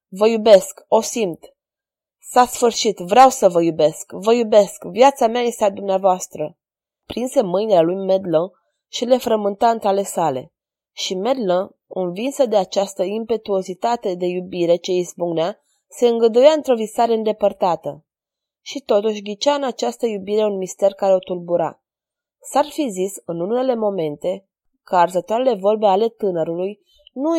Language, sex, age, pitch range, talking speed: Romanian, female, 20-39, 185-235 Hz, 140 wpm